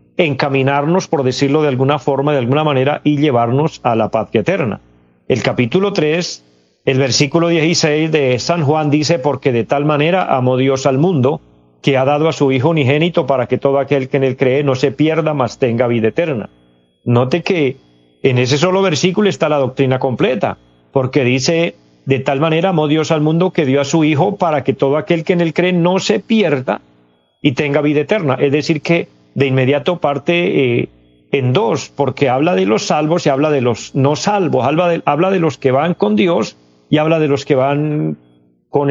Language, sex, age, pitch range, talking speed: Spanish, male, 40-59, 130-165 Hz, 200 wpm